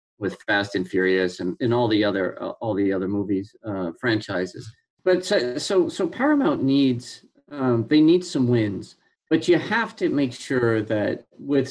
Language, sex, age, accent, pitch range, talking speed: English, male, 40-59, American, 110-150 Hz, 180 wpm